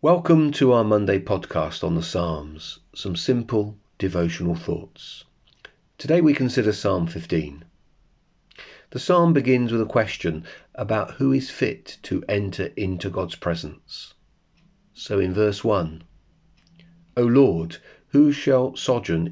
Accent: British